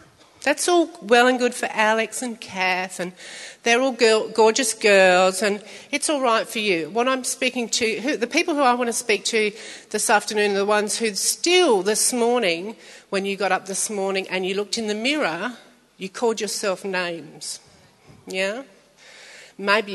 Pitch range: 185-240 Hz